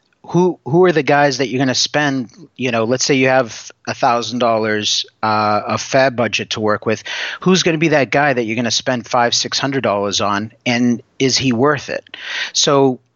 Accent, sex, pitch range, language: American, male, 120-145 Hz, English